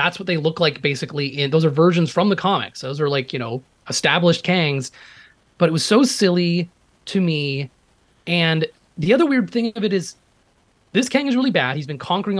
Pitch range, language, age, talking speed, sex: 150-200 Hz, English, 30-49, 205 wpm, male